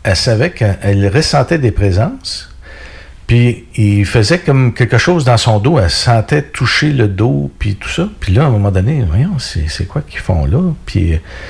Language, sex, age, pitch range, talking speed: French, male, 60-79, 85-110 Hz, 195 wpm